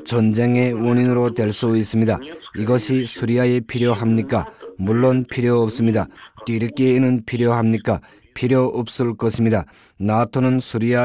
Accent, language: native, Korean